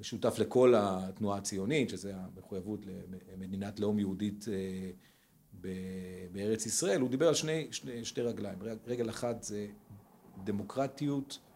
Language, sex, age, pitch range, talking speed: Hebrew, male, 40-59, 105-125 Hz, 120 wpm